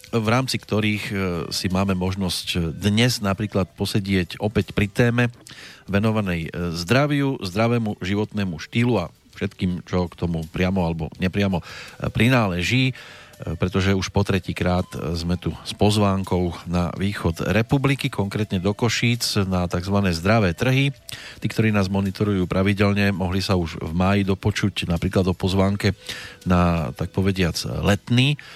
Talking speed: 130 wpm